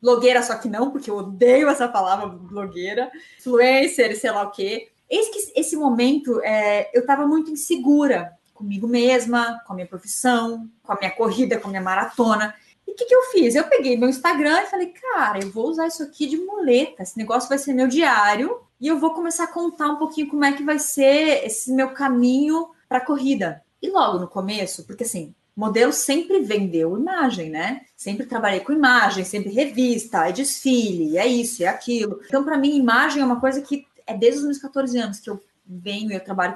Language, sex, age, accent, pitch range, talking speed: Portuguese, female, 20-39, Brazilian, 225-310 Hz, 205 wpm